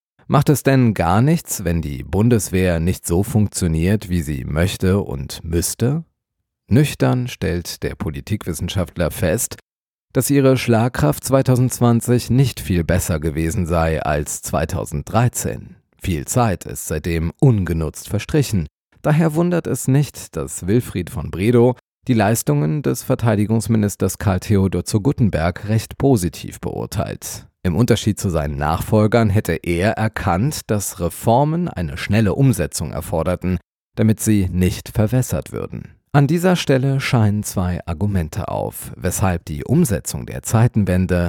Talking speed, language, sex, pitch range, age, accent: 130 wpm, German, male, 85-125 Hz, 40-59, German